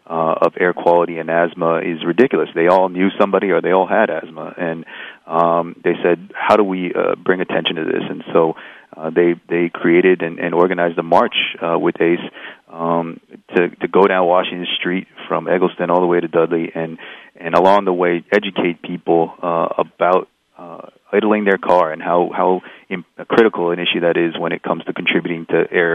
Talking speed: 200 wpm